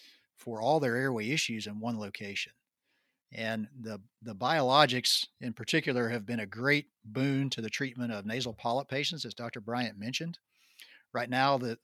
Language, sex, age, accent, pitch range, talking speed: English, male, 40-59, American, 110-135 Hz, 165 wpm